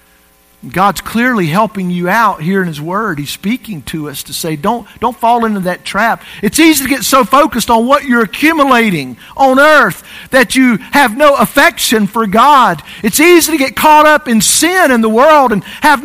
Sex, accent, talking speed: male, American, 200 wpm